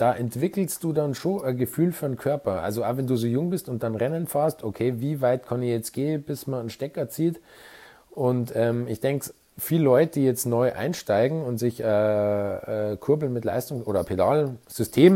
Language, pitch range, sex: German, 115-145 Hz, male